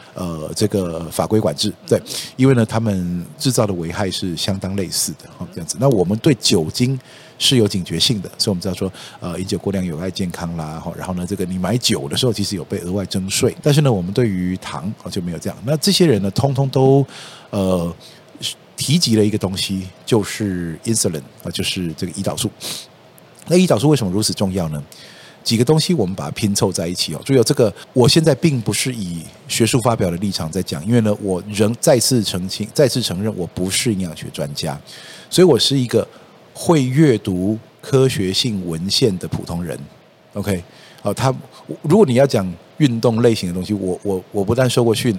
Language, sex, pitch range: Chinese, male, 95-130 Hz